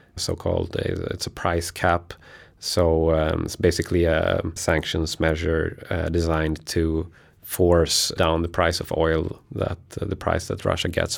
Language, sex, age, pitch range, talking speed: Swedish, male, 30-49, 80-90 Hz, 150 wpm